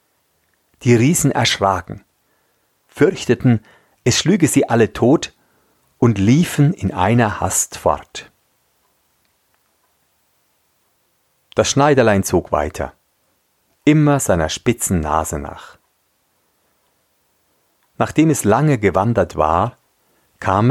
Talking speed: 85 wpm